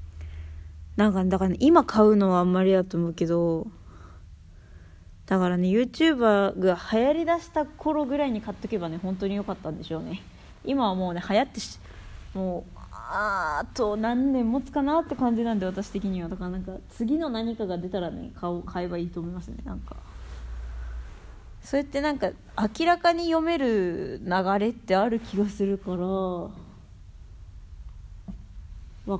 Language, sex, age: Japanese, female, 20-39